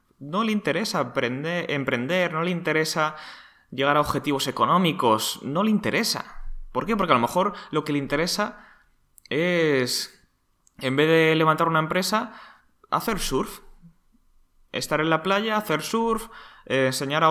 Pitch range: 115-165 Hz